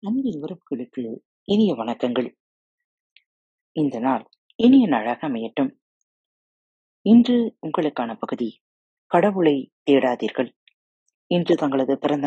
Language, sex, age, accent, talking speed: Tamil, female, 30-49, native, 85 wpm